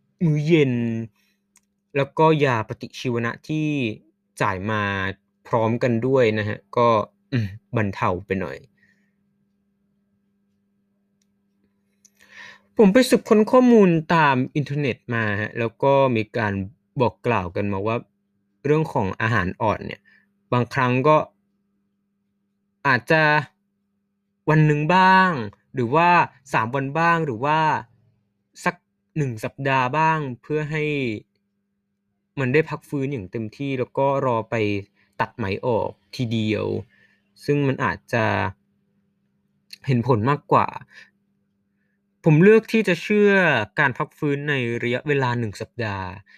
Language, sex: Thai, male